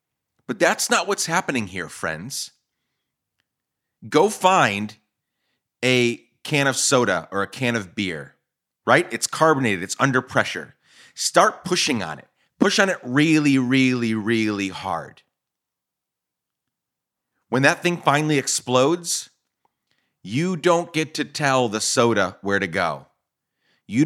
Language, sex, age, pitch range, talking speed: English, male, 30-49, 105-130 Hz, 125 wpm